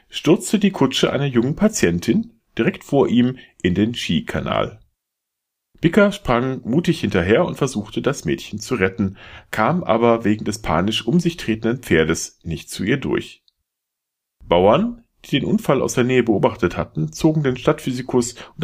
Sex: male